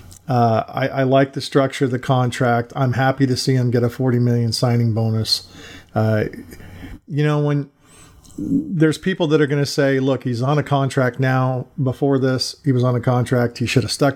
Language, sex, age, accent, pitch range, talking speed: English, male, 40-59, American, 115-135 Hz, 200 wpm